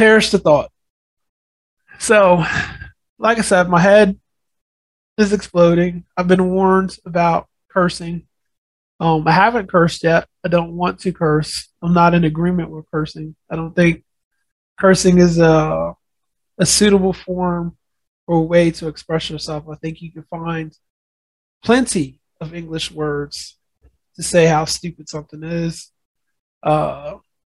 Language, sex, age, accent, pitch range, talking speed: English, male, 20-39, American, 155-180 Hz, 140 wpm